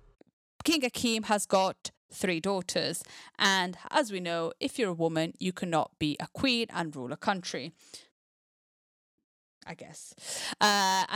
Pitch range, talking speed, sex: 165-210 Hz, 140 wpm, female